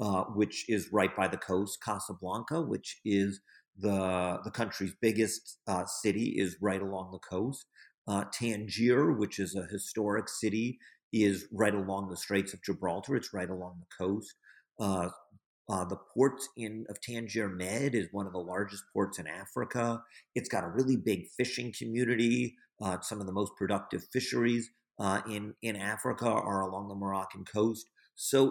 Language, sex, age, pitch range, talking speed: English, male, 50-69, 95-115 Hz, 165 wpm